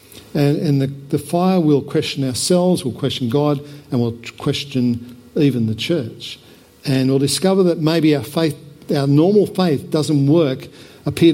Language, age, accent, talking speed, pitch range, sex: English, 60-79, Australian, 160 wpm, 125-155 Hz, male